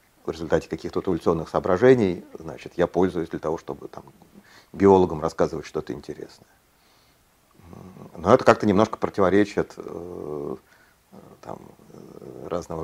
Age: 40-59